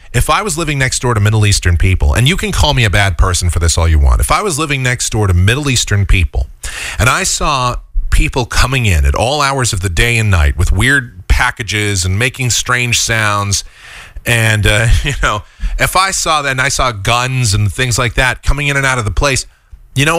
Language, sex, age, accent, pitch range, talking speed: English, male, 30-49, American, 95-150 Hz, 235 wpm